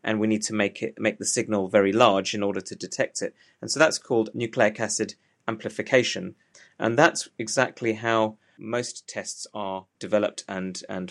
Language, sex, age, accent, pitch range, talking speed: English, male, 30-49, British, 100-120 Hz, 185 wpm